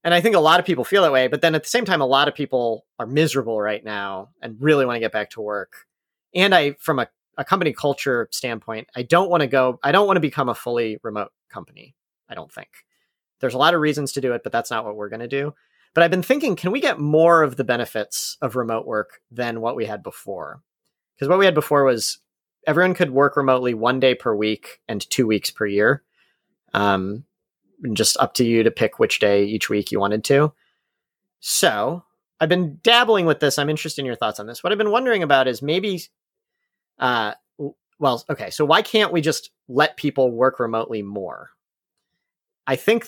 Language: English